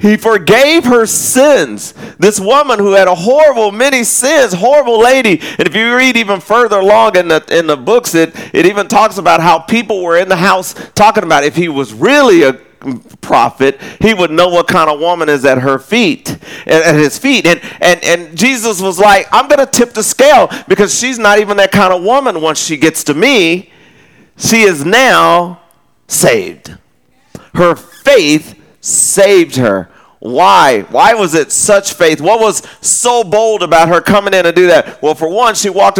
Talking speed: 190 wpm